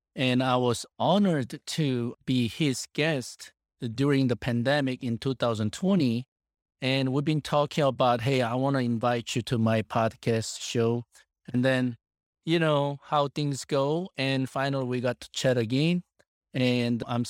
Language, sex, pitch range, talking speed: English, male, 120-145 Hz, 155 wpm